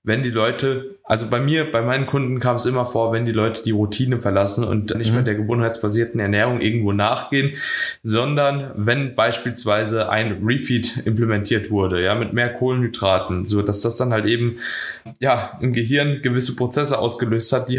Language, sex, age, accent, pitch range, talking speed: German, male, 20-39, German, 110-135 Hz, 175 wpm